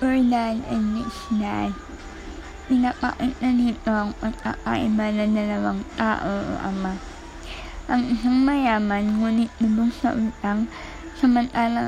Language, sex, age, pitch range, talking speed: Filipino, female, 20-39, 210-240 Hz, 100 wpm